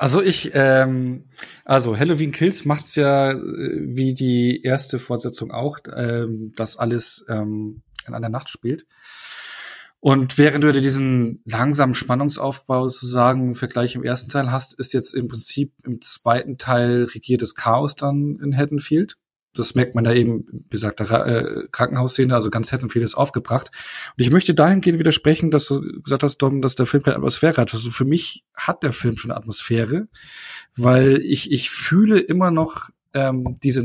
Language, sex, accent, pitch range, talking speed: German, male, German, 125-145 Hz, 170 wpm